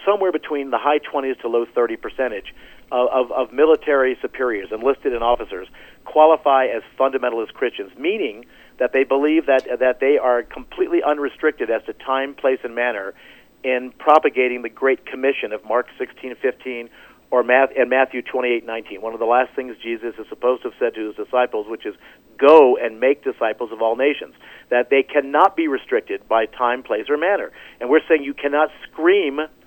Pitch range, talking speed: 130-180 Hz, 180 wpm